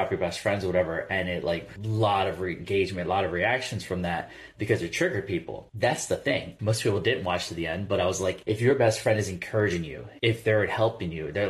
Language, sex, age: English, male, 20-39